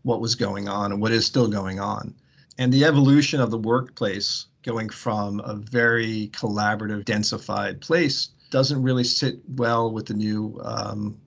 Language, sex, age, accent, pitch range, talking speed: English, male, 40-59, American, 110-135 Hz, 165 wpm